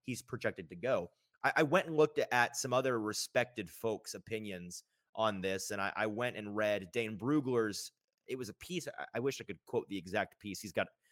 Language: English